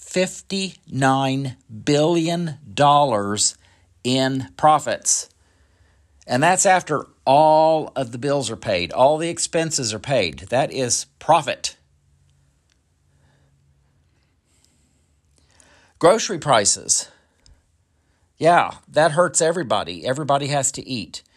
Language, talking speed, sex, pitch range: English, 85 wpm, male, 85-140 Hz